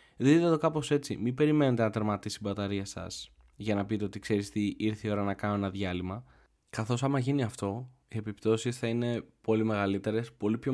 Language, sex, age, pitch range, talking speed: Greek, male, 20-39, 100-115 Hz, 200 wpm